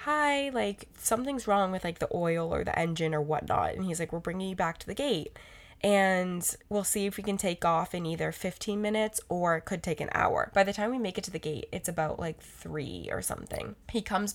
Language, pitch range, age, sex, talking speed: English, 170-205 Hz, 10-29, female, 245 wpm